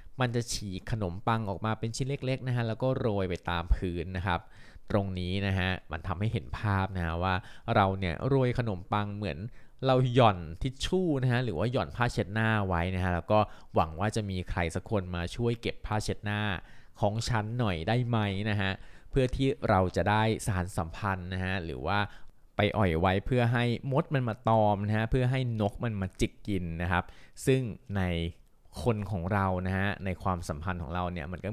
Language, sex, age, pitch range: Thai, male, 20-39, 95-115 Hz